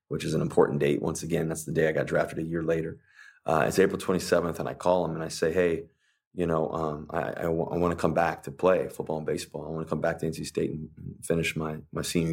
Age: 30-49